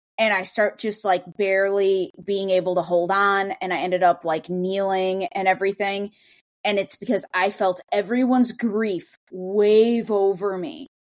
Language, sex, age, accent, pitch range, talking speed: English, female, 20-39, American, 185-230 Hz, 155 wpm